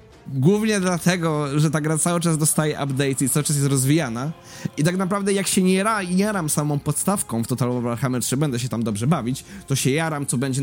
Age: 20-39